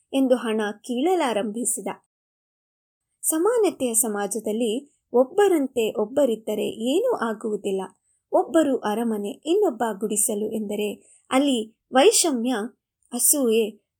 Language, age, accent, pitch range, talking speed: Kannada, 20-39, native, 215-305 Hz, 75 wpm